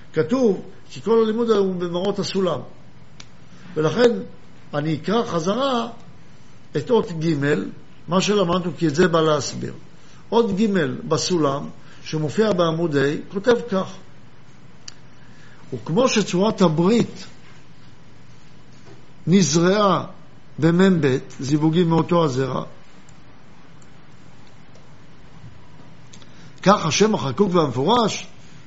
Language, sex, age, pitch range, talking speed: Hebrew, male, 60-79, 155-200 Hz, 85 wpm